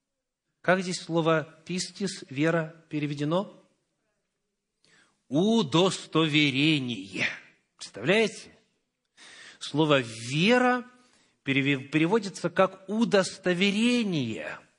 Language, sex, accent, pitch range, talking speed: Russian, male, native, 140-195 Hz, 55 wpm